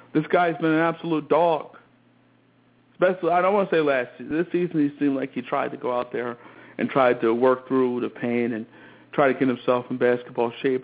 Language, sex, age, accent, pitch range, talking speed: English, male, 50-69, American, 130-175 Hz, 220 wpm